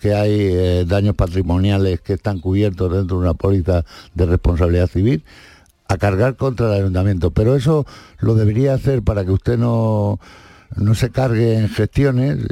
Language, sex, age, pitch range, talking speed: Spanish, male, 60-79, 100-130 Hz, 165 wpm